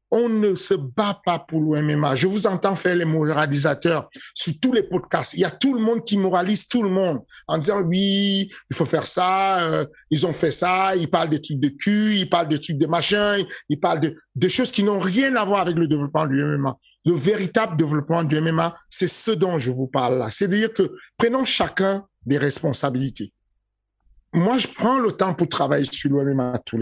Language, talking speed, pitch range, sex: French, 215 wpm, 150-205 Hz, male